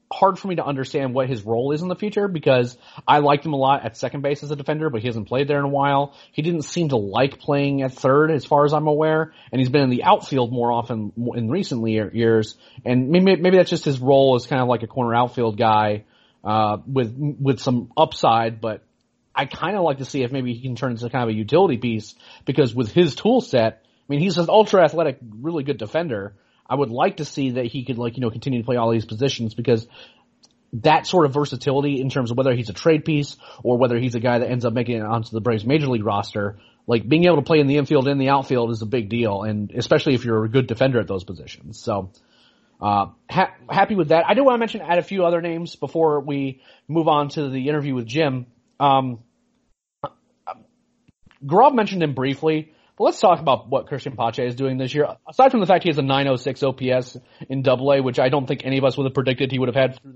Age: 30-49